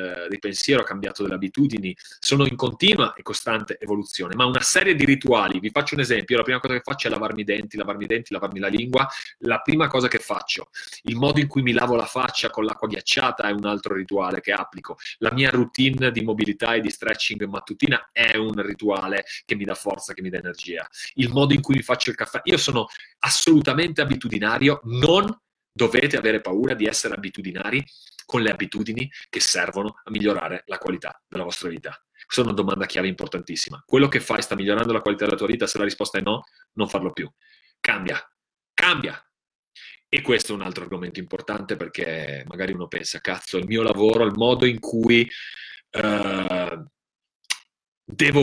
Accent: native